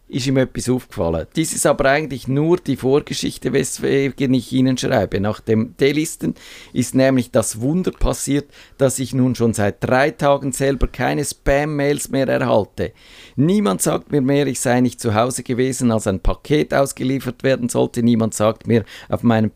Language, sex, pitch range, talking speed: German, male, 115-140 Hz, 170 wpm